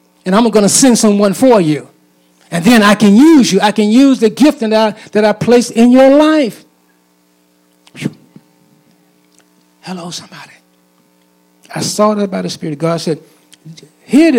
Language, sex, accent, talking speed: English, male, American, 155 wpm